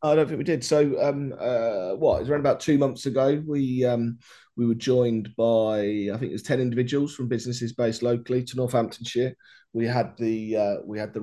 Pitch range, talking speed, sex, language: 95-120 Hz, 205 wpm, male, English